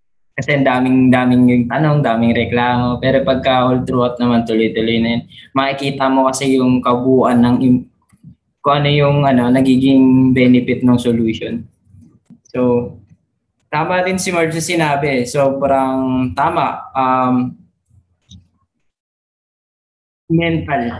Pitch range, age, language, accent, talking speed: 125-160 Hz, 20-39, Filipino, native, 115 wpm